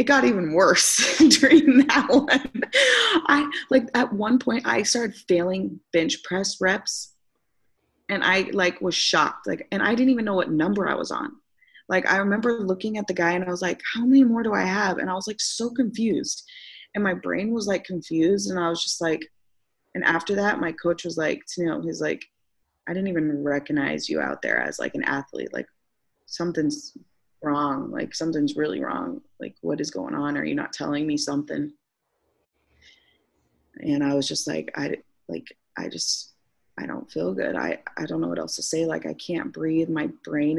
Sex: female